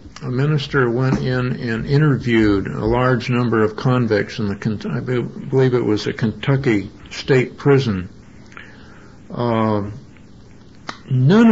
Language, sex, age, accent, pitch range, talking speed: English, male, 60-79, American, 110-135 Hz, 120 wpm